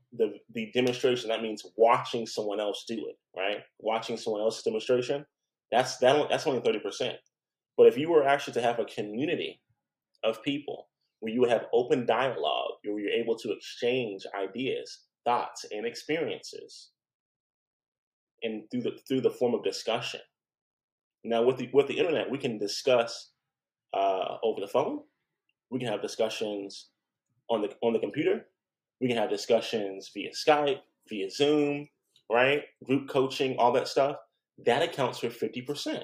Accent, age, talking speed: American, 30-49, 155 wpm